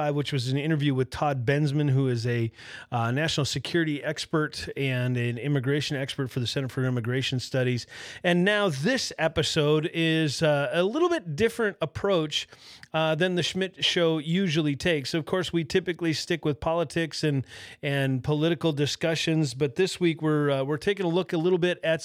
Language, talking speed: English, 180 wpm